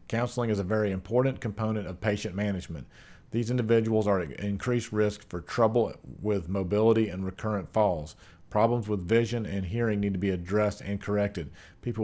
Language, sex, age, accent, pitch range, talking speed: English, male, 40-59, American, 95-110 Hz, 170 wpm